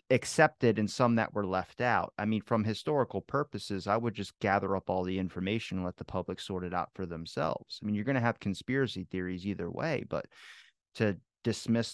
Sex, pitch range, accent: male, 95-120 Hz, American